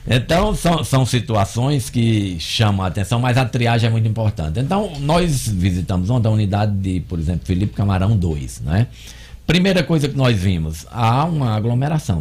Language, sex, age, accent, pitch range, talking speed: Portuguese, male, 50-69, Brazilian, 85-120 Hz, 170 wpm